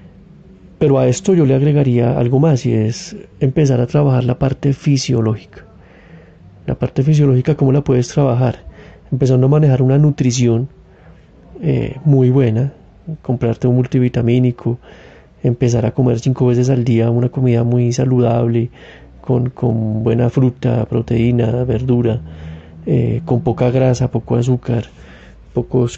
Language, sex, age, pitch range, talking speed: Spanish, male, 30-49, 120-135 Hz, 135 wpm